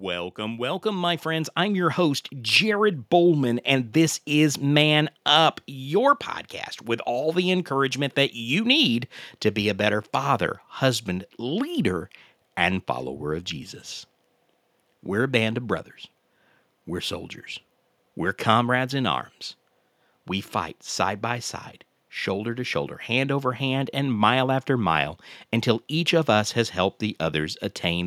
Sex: male